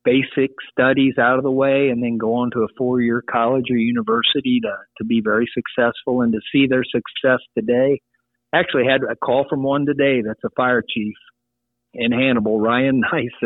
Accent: American